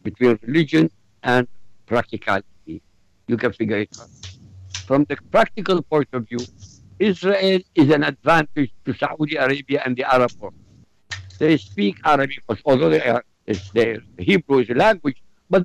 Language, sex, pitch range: English, male, 120-180 Hz